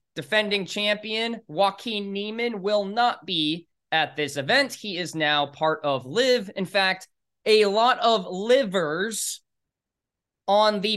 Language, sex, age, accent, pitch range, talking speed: English, male, 20-39, American, 155-215 Hz, 130 wpm